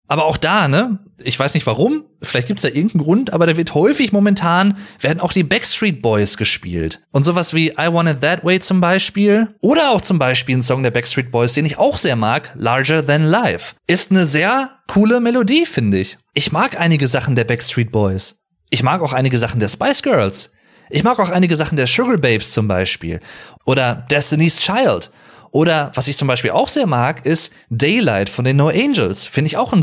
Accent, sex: German, male